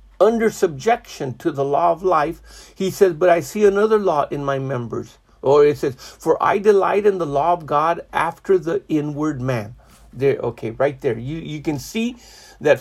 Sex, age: male, 50-69